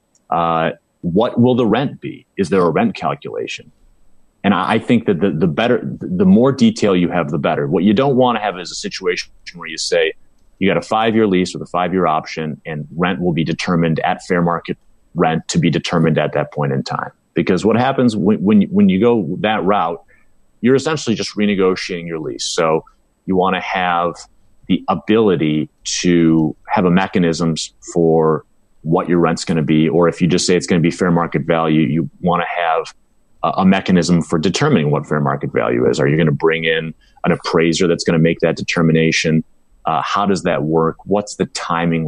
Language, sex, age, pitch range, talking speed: English, male, 30-49, 80-95 Hz, 205 wpm